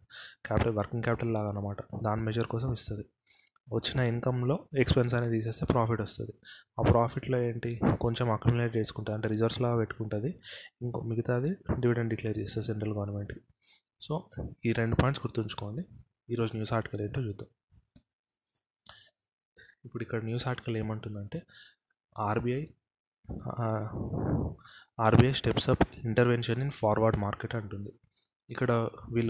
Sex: male